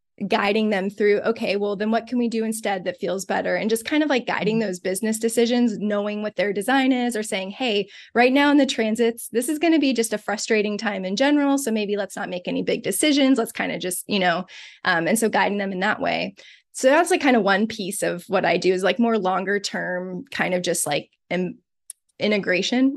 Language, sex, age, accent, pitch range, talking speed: English, female, 20-39, American, 190-230 Hz, 235 wpm